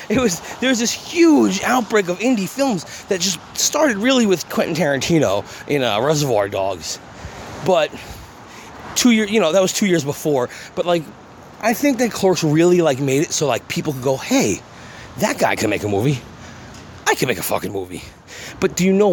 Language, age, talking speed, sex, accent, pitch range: English, 30-49, 200 wpm, male, American, 120-180 Hz